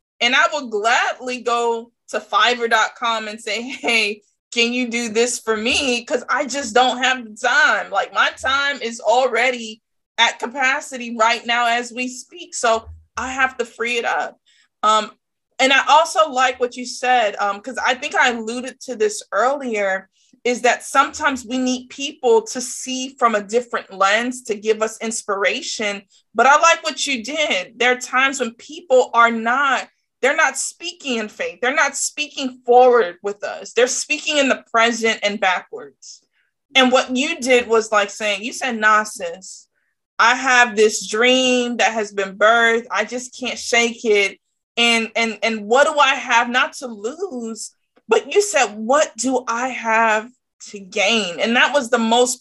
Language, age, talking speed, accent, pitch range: English, 20-39, 175 wpm, American, 225-260 Hz